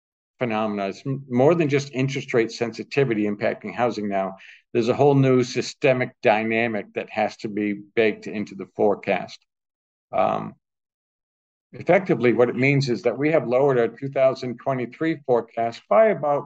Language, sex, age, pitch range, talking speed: English, male, 50-69, 110-135 Hz, 145 wpm